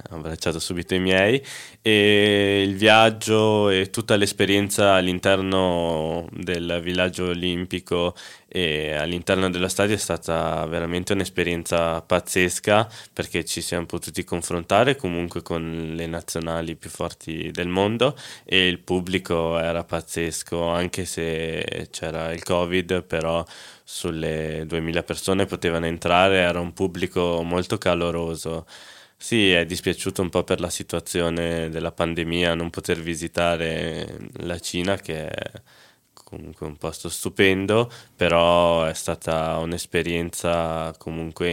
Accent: native